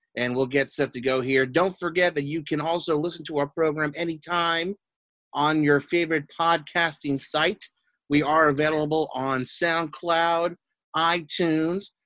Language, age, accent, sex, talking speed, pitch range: English, 30-49, American, male, 145 wpm, 130-165 Hz